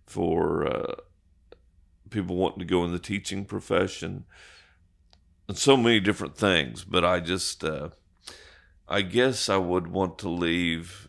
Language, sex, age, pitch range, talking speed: English, male, 50-69, 85-95 Hz, 140 wpm